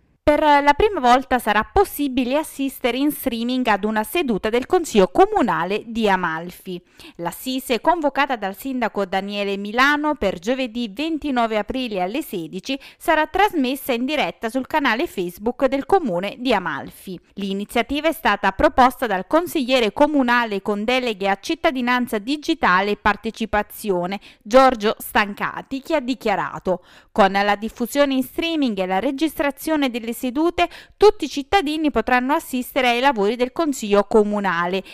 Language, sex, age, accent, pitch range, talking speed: Italian, female, 20-39, native, 200-290 Hz, 135 wpm